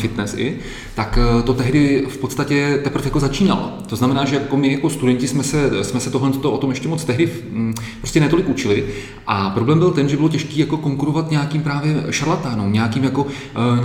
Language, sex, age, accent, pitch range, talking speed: Czech, male, 30-49, native, 125-145 Hz, 200 wpm